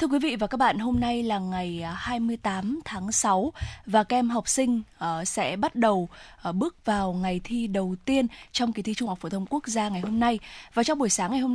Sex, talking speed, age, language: female, 245 wpm, 20-39, Vietnamese